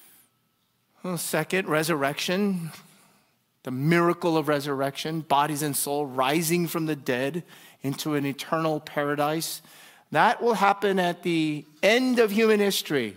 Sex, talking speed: male, 120 wpm